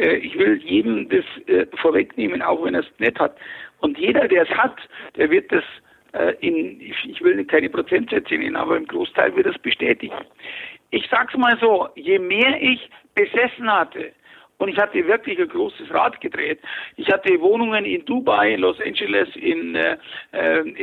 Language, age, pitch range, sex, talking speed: German, 60-79, 225-370 Hz, male, 170 wpm